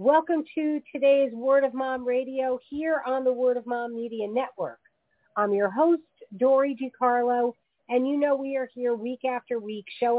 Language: English